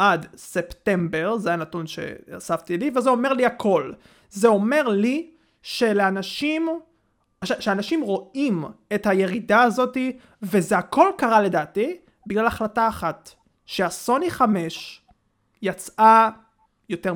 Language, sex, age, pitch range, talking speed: Hebrew, male, 30-49, 185-235 Hz, 110 wpm